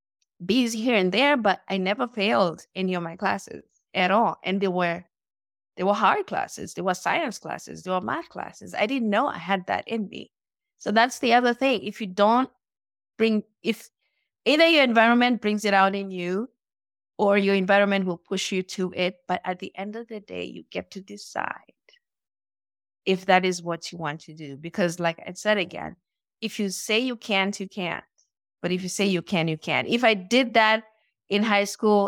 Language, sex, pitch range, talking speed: English, female, 180-235 Hz, 205 wpm